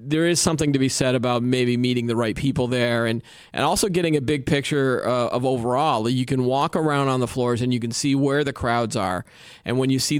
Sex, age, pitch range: male, 40-59, 120-140 Hz